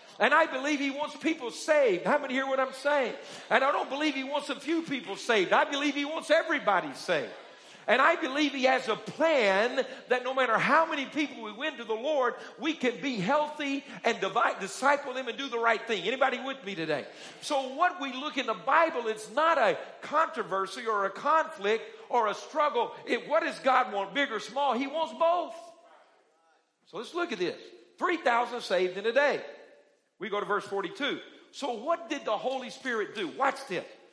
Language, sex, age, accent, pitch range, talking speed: English, male, 50-69, American, 220-310 Hz, 200 wpm